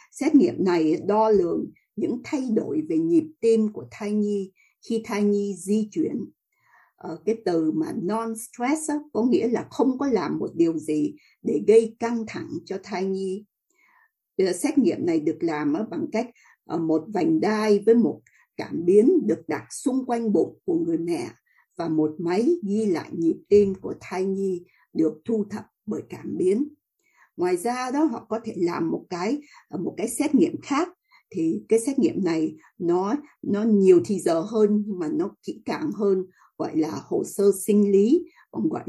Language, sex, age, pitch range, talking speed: English, female, 60-79, 195-295 Hz, 180 wpm